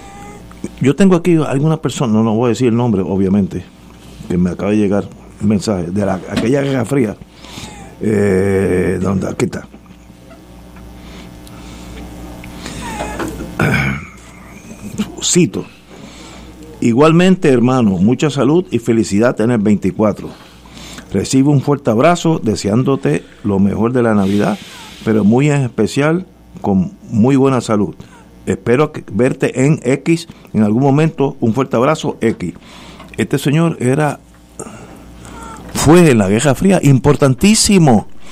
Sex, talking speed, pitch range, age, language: male, 120 wpm, 95-150 Hz, 50-69, Spanish